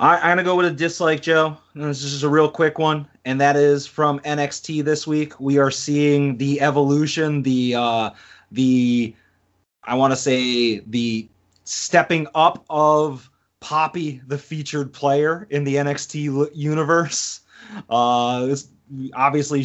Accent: American